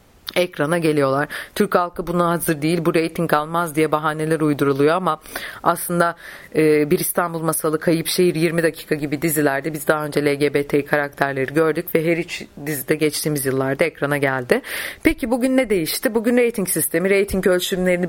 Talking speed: 160 wpm